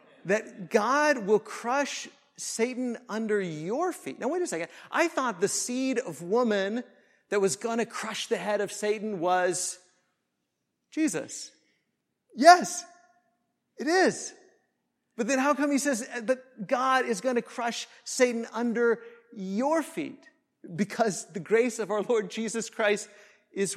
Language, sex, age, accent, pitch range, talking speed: English, male, 40-59, American, 185-245 Hz, 145 wpm